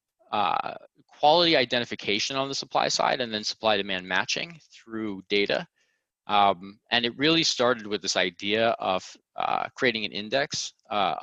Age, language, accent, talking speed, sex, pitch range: 20-39, English, American, 150 wpm, male, 100-125 Hz